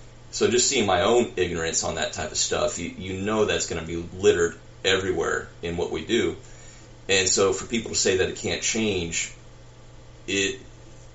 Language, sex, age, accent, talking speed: English, male, 30-49, American, 190 wpm